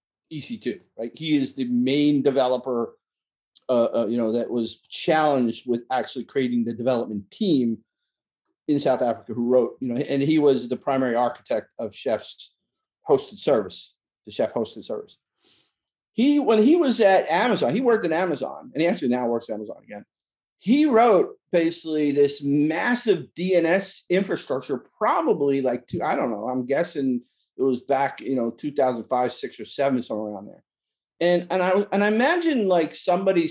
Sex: male